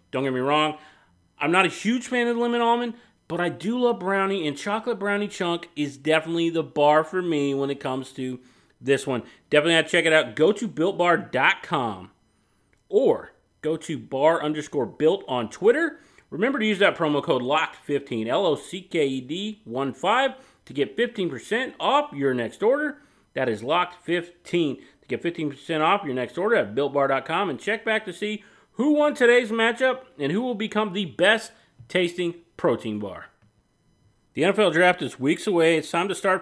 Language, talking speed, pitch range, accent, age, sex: English, 175 wpm, 145-215 Hz, American, 30-49, male